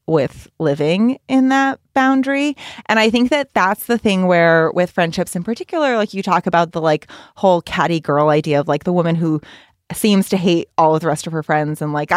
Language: English